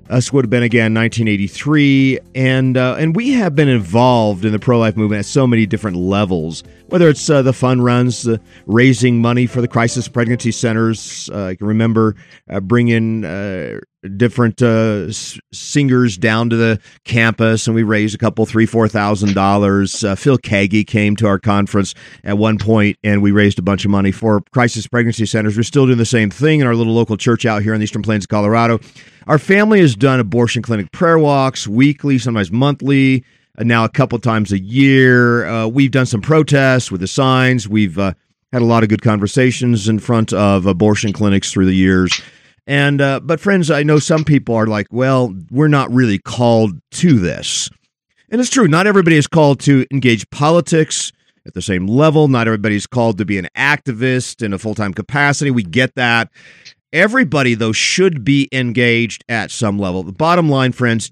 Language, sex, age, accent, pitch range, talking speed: English, male, 40-59, American, 105-135 Hz, 195 wpm